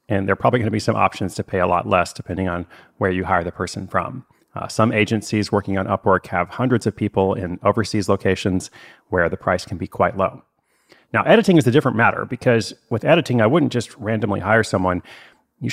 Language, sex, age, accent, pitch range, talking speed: English, male, 30-49, American, 100-120 Hz, 220 wpm